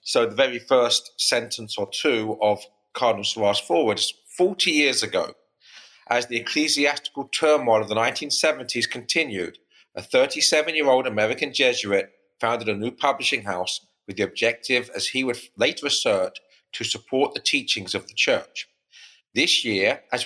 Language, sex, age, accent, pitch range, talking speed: English, male, 40-59, British, 110-140 Hz, 150 wpm